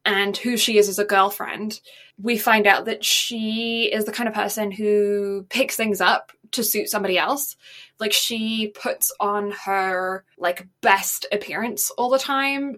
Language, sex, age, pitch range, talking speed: English, female, 10-29, 195-230 Hz, 170 wpm